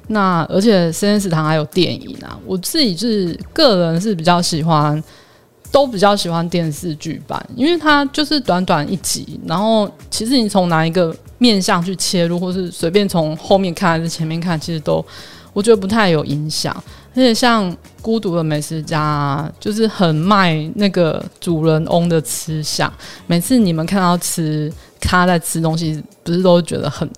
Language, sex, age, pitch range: Chinese, female, 20-39, 160-205 Hz